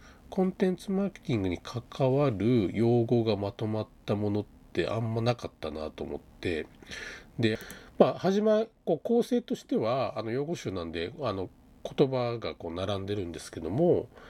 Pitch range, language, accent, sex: 100-150 Hz, Japanese, native, male